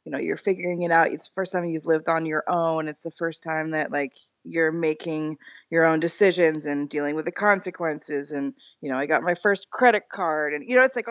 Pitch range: 150-195 Hz